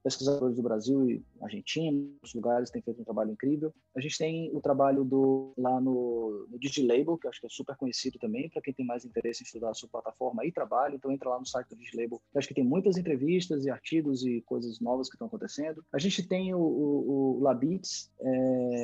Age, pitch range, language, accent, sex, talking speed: 20-39, 120-155 Hz, Portuguese, Brazilian, male, 225 wpm